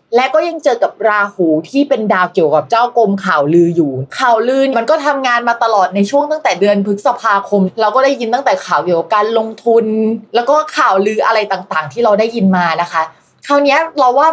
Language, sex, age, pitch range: Thai, female, 20-39, 190-260 Hz